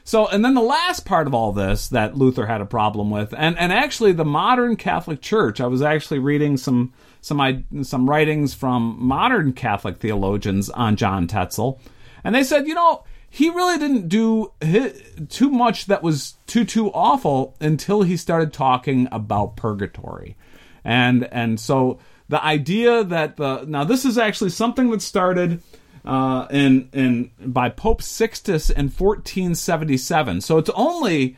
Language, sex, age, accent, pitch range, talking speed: English, male, 40-59, American, 125-195 Hz, 160 wpm